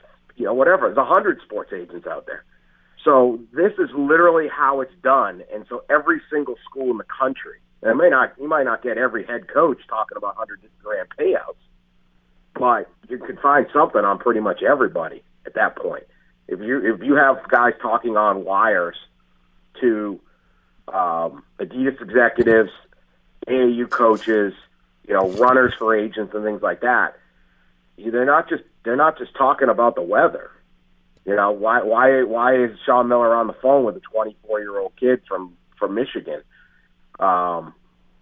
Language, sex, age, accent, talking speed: English, male, 50-69, American, 160 wpm